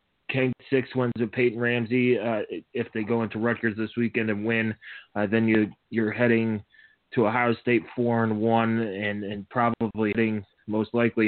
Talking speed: 170 wpm